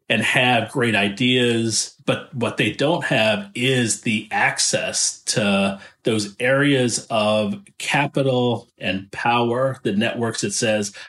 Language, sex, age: English, male, 40-59